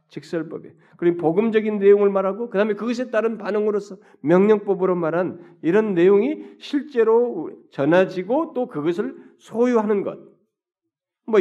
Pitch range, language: 125-205 Hz, Korean